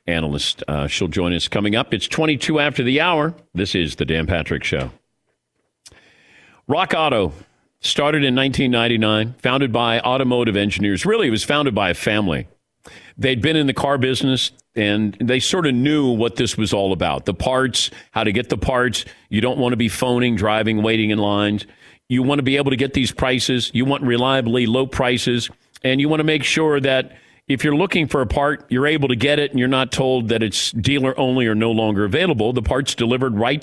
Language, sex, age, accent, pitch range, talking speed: English, male, 50-69, American, 115-140 Hz, 205 wpm